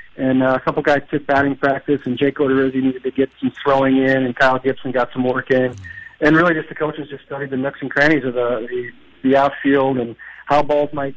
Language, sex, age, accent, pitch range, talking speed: English, male, 40-59, American, 130-165 Hz, 235 wpm